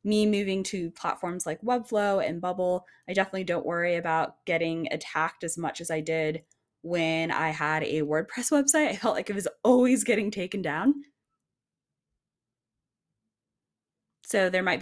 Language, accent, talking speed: English, American, 155 wpm